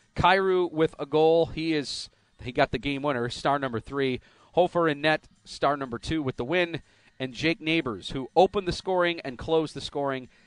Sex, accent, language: male, American, English